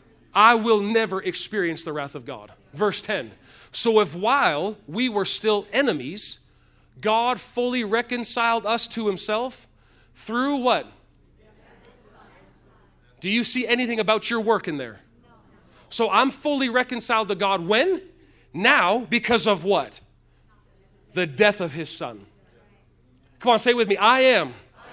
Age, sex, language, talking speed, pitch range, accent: 40-59, male, English, 140 wpm, 175-240 Hz, American